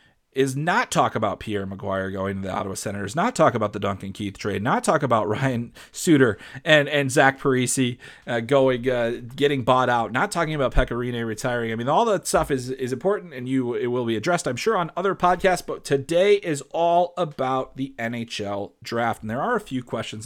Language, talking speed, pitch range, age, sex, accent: English, 210 wpm, 115-150 Hz, 30-49, male, American